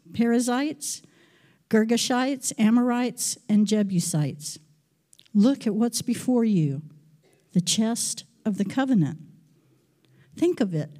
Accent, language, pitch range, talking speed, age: American, English, 165-225 Hz, 100 wpm, 60-79